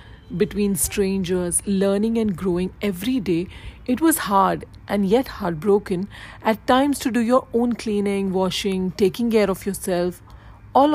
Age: 40-59